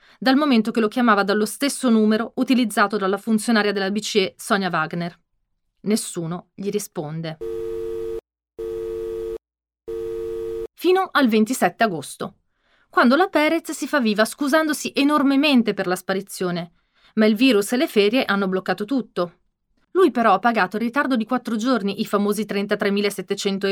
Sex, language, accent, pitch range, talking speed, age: female, Italian, native, 185-240 Hz, 135 wpm, 30-49